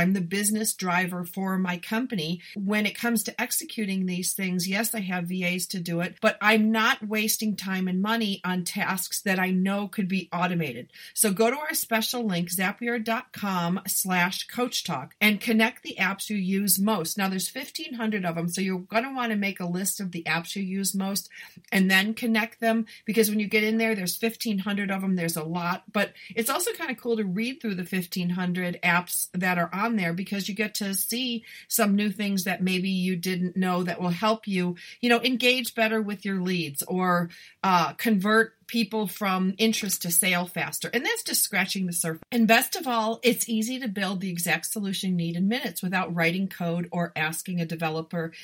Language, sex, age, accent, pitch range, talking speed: English, female, 40-59, American, 180-225 Hz, 205 wpm